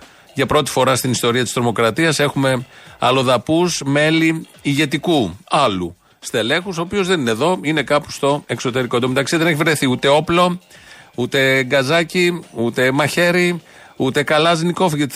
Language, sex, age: Greek, male, 40-59